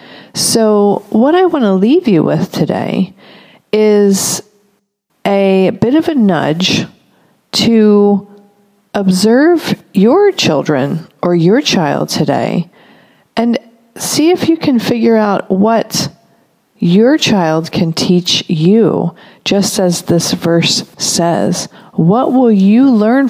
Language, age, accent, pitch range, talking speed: English, 40-59, American, 180-225 Hz, 115 wpm